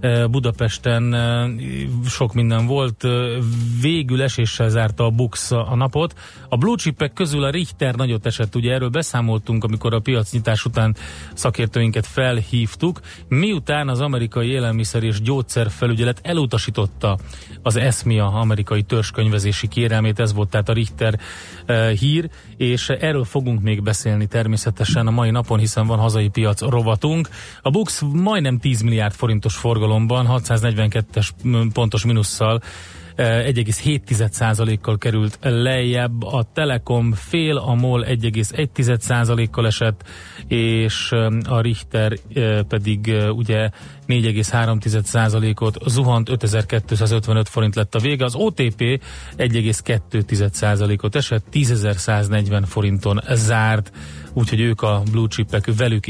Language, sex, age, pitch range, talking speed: Hungarian, male, 30-49, 110-120 Hz, 110 wpm